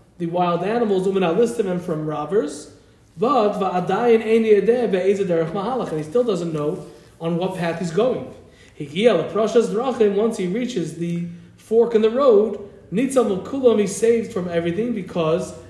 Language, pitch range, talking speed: English, 165-230 Hz, 130 wpm